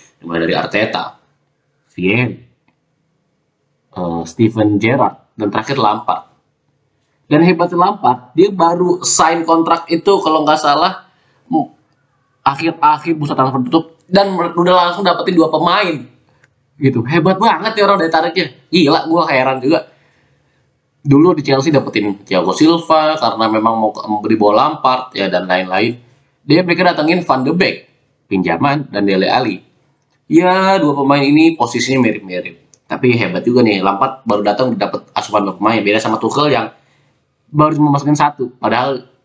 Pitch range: 105-155 Hz